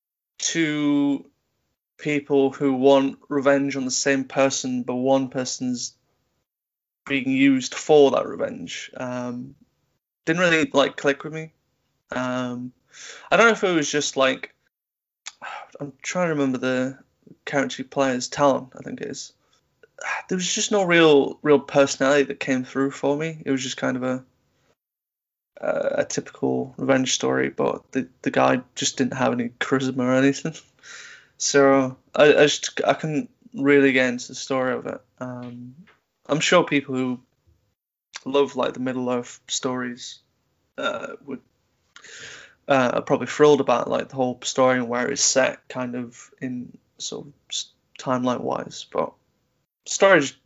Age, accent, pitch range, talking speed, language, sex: 20-39, British, 125-145 Hz, 150 wpm, English, male